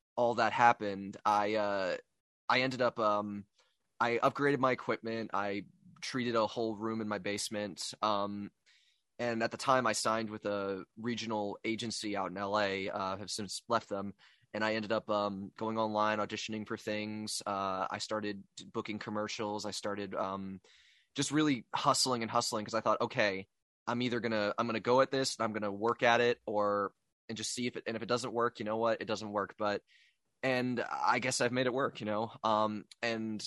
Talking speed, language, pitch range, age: 200 wpm, English, 100-115 Hz, 20-39